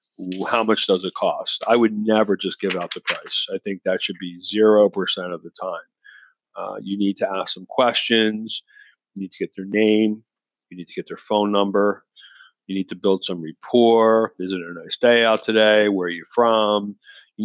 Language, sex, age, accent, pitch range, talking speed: English, male, 40-59, American, 95-110 Hz, 205 wpm